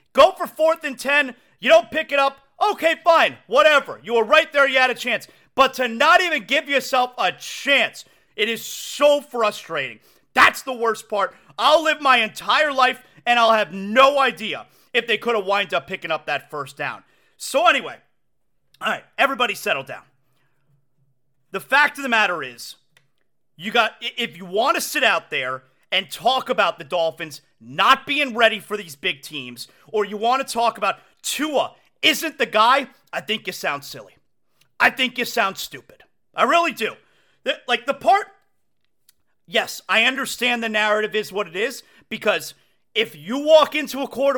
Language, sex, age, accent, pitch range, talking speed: English, male, 40-59, American, 210-285 Hz, 180 wpm